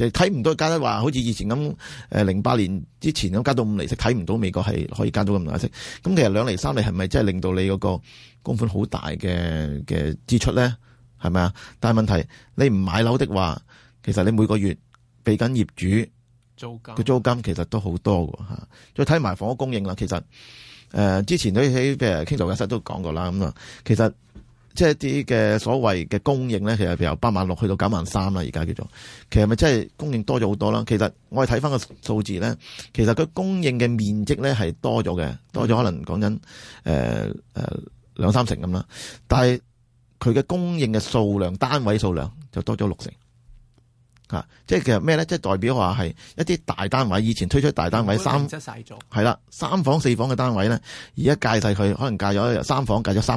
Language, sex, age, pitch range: Chinese, male, 30-49, 100-130 Hz